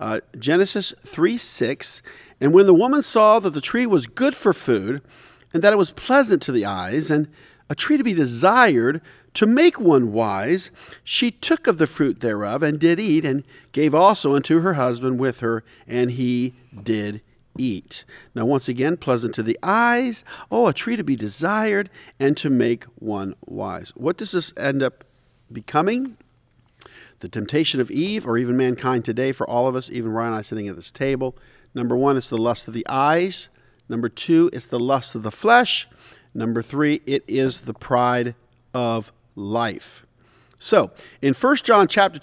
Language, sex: English, male